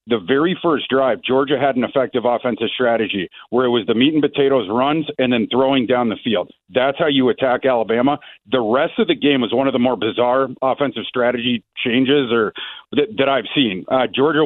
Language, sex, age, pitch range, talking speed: English, male, 50-69, 125-140 Hz, 210 wpm